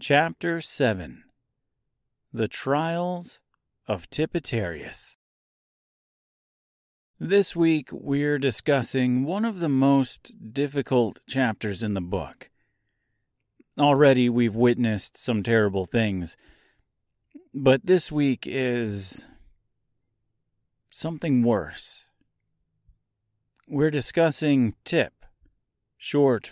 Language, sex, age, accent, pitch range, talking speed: English, male, 40-59, American, 105-145 Hz, 80 wpm